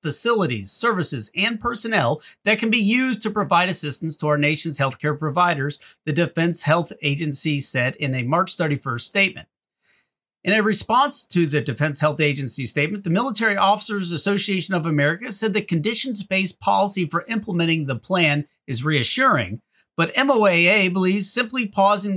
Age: 50-69